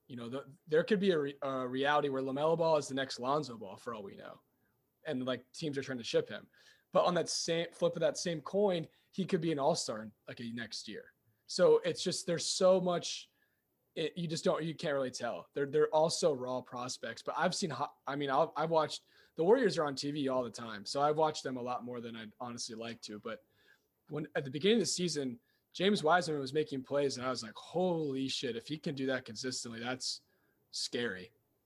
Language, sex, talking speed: English, male, 225 wpm